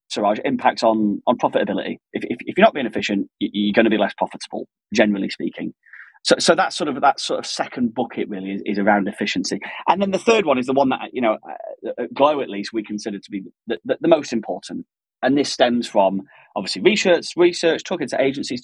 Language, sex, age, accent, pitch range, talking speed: English, male, 30-49, British, 110-150 Hz, 220 wpm